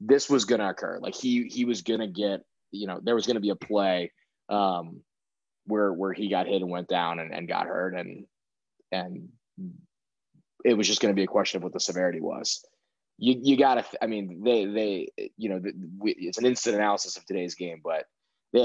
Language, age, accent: English, 20-39, American